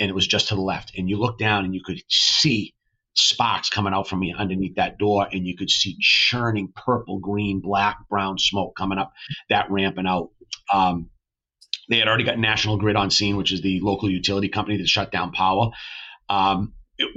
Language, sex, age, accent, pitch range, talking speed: English, male, 40-59, American, 100-115 Hz, 210 wpm